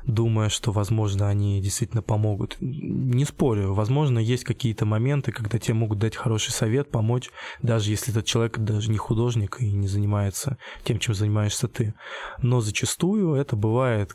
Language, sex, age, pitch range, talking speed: Russian, male, 20-39, 105-125 Hz, 155 wpm